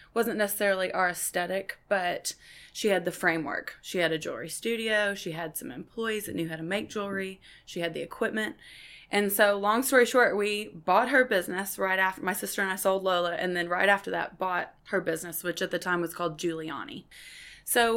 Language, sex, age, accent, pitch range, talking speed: English, female, 20-39, American, 175-215 Hz, 205 wpm